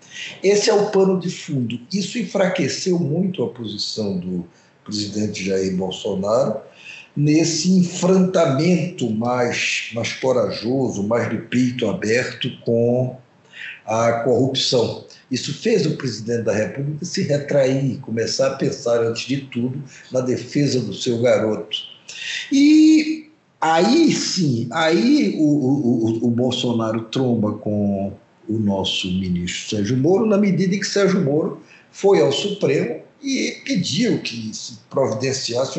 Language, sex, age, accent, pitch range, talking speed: Portuguese, male, 60-79, Brazilian, 115-180 Hz, 125 wpm